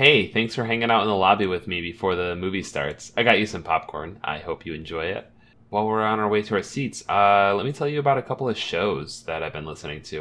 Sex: male